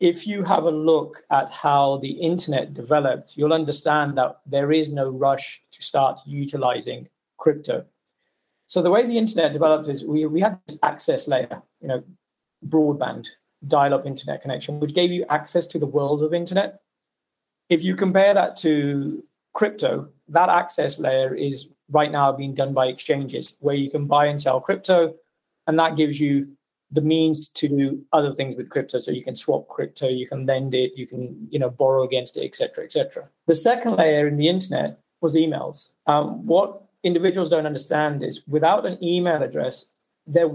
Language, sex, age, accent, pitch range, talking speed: English, male, 30-49, British, 140-170 Hz, 180 wpm